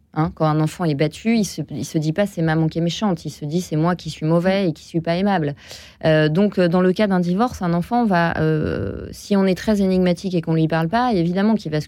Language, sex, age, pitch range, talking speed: French, female, 30-49, 155-195 Hz, 280 wpm